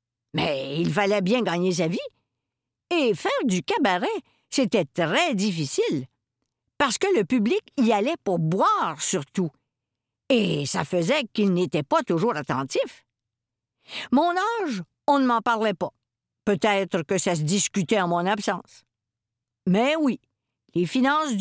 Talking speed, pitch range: 140 wpm, 170-255 Hz